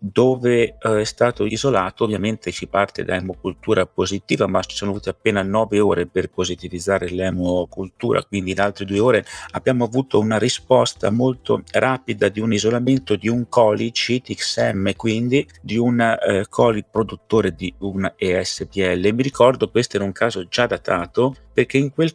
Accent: native